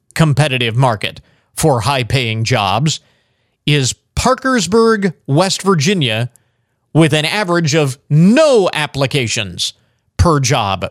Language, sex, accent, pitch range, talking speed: English, male, American, 120-165 Hz, 95 wpm